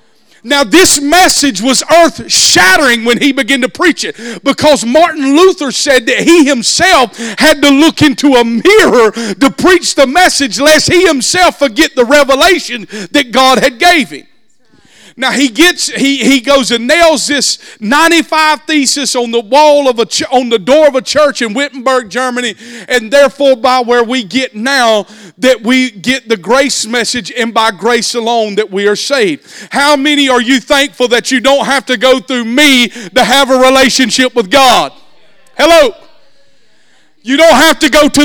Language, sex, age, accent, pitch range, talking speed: English, male, 40-59, American, 255-320 Hz, 175 wpm